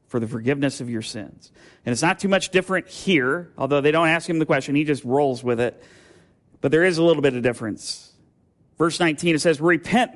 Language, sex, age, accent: English, male, 40-59, American